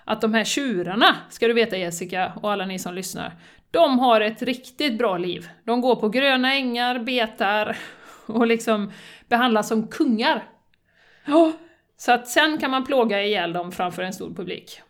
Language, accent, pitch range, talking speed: Swedish, native, 200-255 Hz, 170 wpm